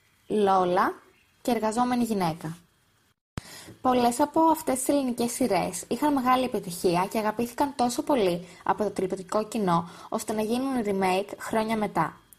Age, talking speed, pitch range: 20-39, 130 wpm, 195-250 Hz